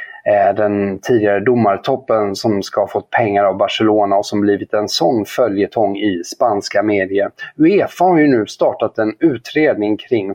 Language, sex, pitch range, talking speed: Swedish, male, 110-150 Hz, 155 wpm